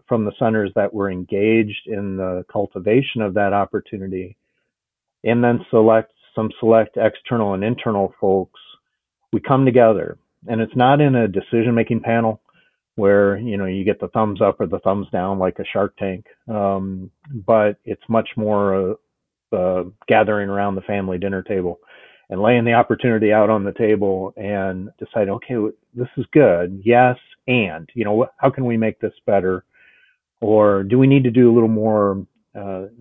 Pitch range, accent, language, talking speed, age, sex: 95-115 Hz, American, English, 170 wpm, 40-59, male